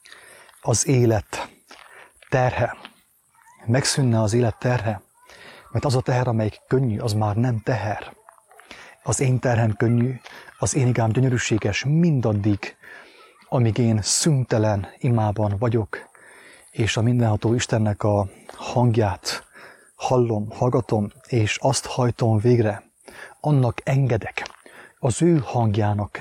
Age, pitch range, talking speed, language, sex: 30-49, 110-130 Hz, 110 wpm, English, male